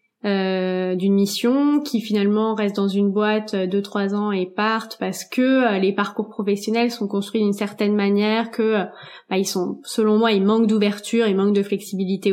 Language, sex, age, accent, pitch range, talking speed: French, female, 20-39, French, 200-240 Hz, 195 wpm